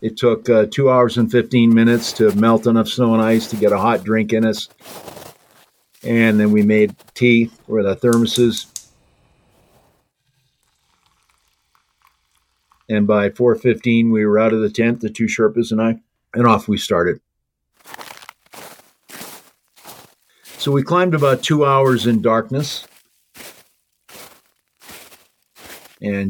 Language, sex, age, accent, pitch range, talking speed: English, male, 50-69, American, 110-125 Hz, 130 wpm